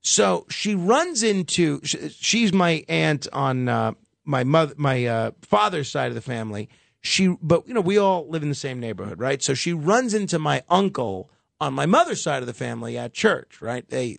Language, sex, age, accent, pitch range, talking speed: English, male, 40-59, American, 135-200 Hz, 200 wpm